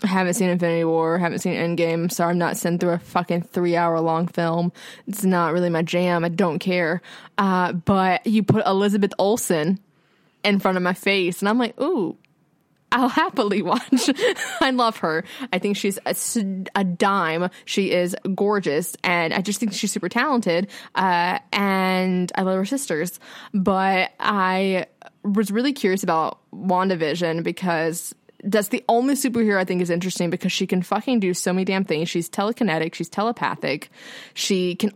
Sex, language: female, English